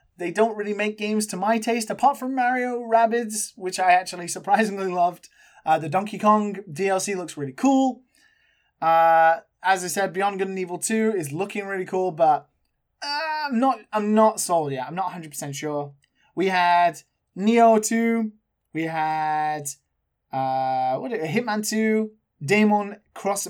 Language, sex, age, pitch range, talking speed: English, male, 20-39, 175-225 Hz, 165 wpm